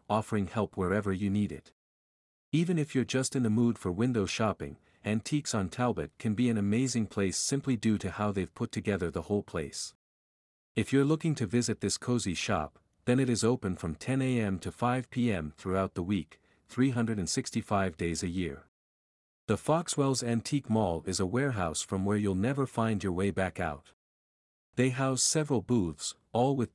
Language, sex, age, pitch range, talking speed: English, male, 50-69, 95-125 Hz, 180 wpm